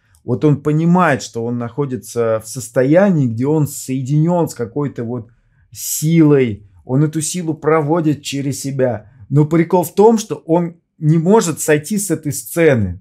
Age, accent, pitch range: 20-39, native, 115-155 Hz